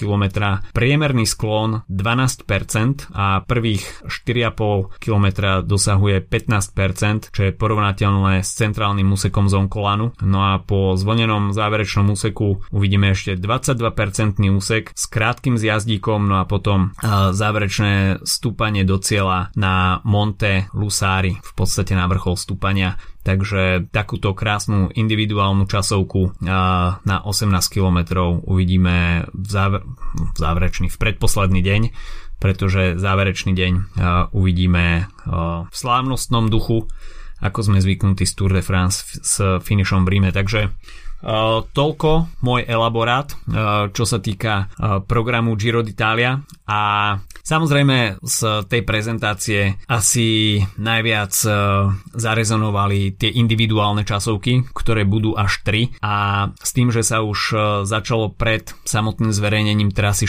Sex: male